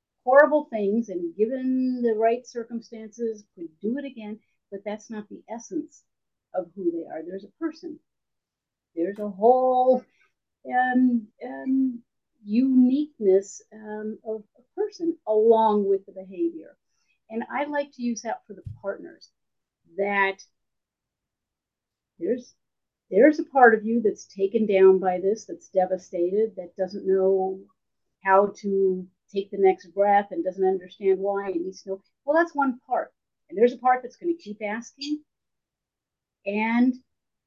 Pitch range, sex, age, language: 195-250 Hz, female, 50-69, English